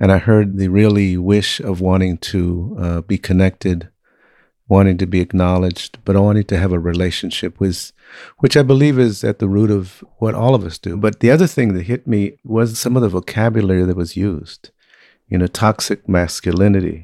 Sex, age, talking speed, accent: male, 50-69, 195 wpm, American